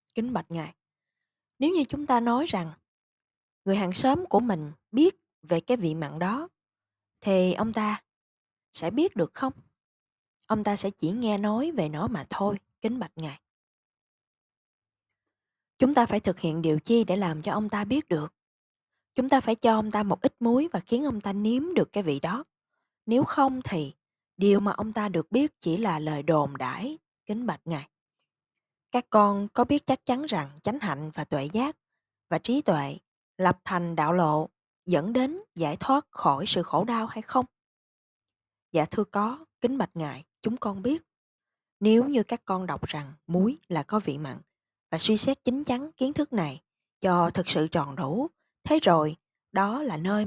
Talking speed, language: 185 wpm, Vietnamese